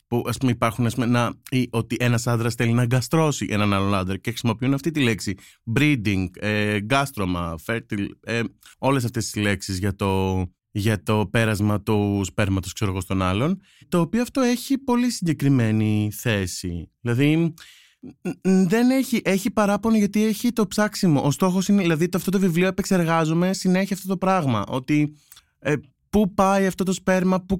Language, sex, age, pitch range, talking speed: Greek, male, 20-39, 115-185 Hz, 175 wpm